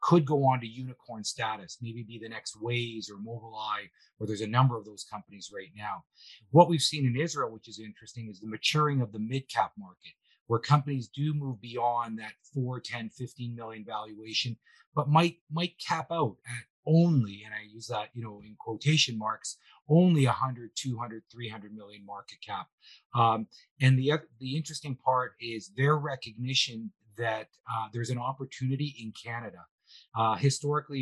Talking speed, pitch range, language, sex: 175 wpm, 110-135 Hz, English, male